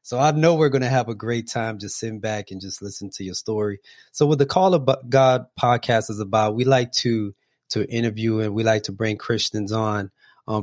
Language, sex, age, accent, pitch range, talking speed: English, male, 20-39, American, 100-125 Hz, 230 wpm